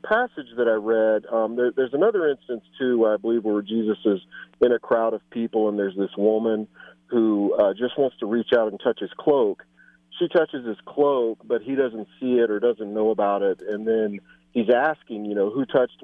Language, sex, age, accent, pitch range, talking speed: English, male, 40-59, American, 105-125 Hz, 215 wpm